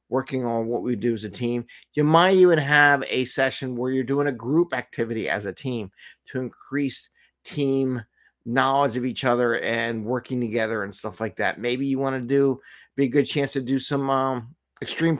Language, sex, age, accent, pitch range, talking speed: English, male, 50-69, American, 115-145 Hz, 200 wpm